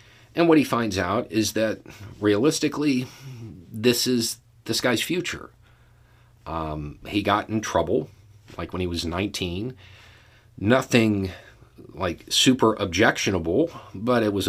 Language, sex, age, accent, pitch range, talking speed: English, male, 40-59, American, 95-115 Hz, 125 wpm